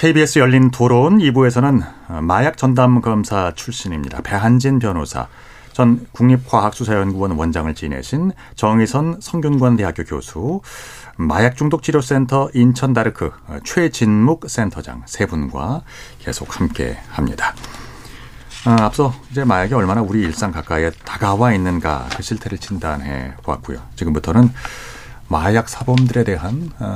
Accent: native